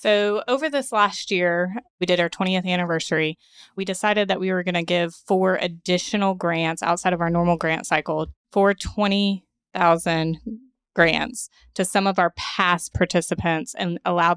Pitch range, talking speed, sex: 165-185 Hz, 160 wpm, female